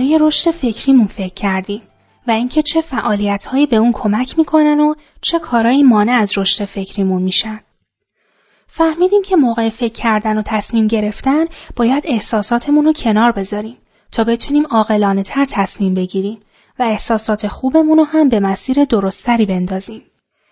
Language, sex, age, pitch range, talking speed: Persian, female, 10-29, 200-275 Hz, 135 wpm